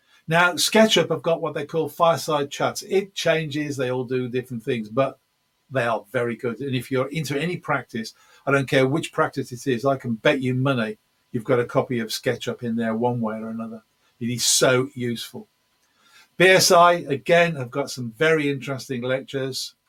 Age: 50-69